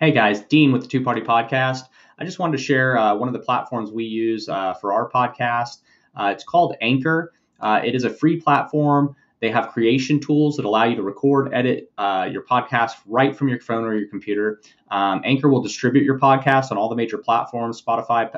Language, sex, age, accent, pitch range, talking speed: English, male, 30-49, American, 105-150 Hz, 210 wpm